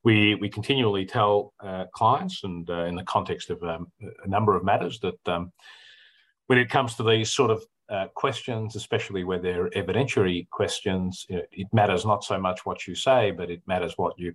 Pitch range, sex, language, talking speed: 90-110 Hz, male, English, 195 wpm